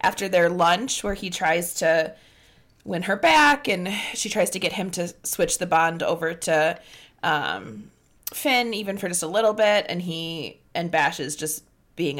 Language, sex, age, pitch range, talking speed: English, female, 20-39, 160-210 Hz, 180 wpm